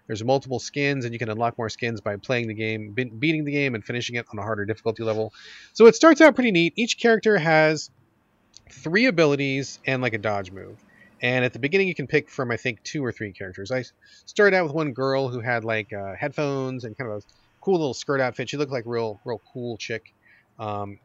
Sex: male